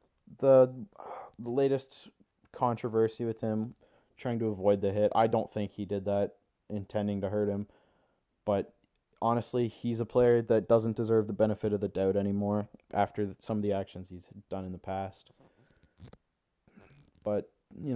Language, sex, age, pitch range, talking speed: English, male, 20-39, 100-120 Hz, 155 wpm